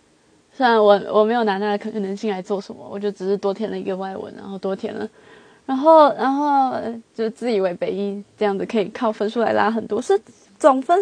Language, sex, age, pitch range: Chinese, female, 20-39, 200-255 Hz